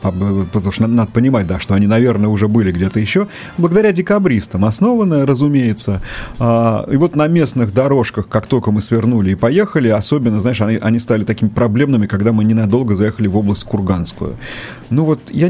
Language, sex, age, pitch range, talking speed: Russian, male, 30-49, 105-140 Hz, 180 wpm